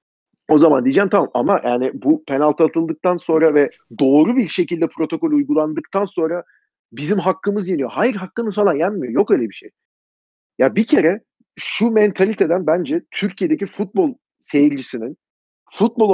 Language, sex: Turkish, male